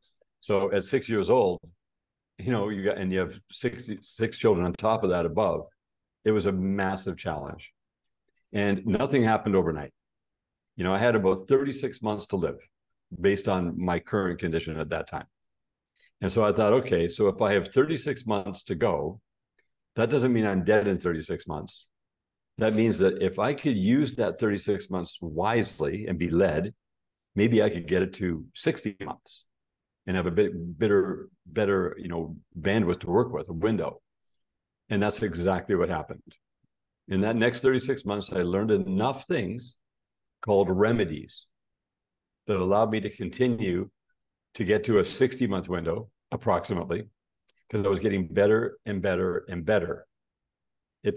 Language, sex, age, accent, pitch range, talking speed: English, male, 60-79, American, 95-120 Hz, 165 wpm